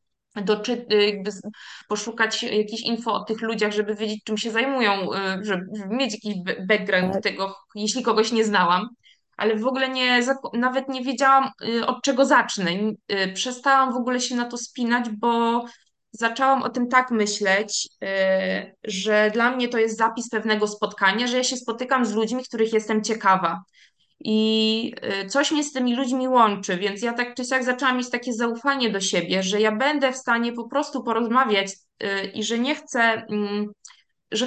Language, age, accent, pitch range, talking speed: Polish, 20-39, native, 215-255 Hz, 155 wpm